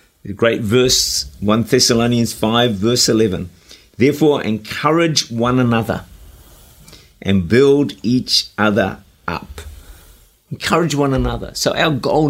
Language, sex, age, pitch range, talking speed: English, male, 50-69, 110-150 Hz, 110 wpm